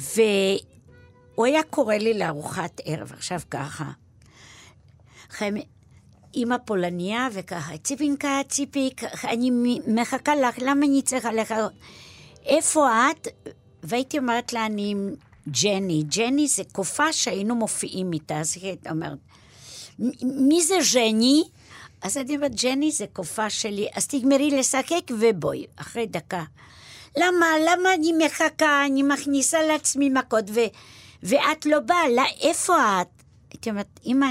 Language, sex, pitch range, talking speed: Hebrew, female, 190-290 Hz, 125 wpm